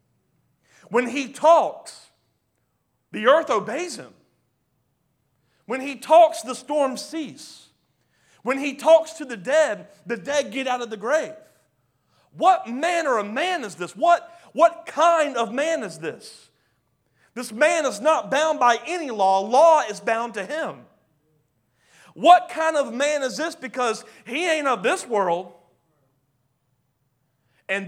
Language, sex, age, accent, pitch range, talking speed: English, male, 40-59, American, 175-280 Hz, 140 wpm